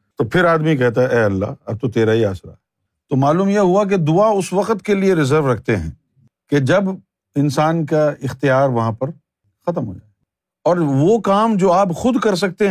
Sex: male